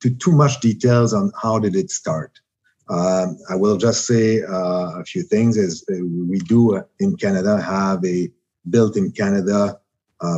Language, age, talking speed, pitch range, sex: English, 50-69, 160 wpm, 90-125 Hz, male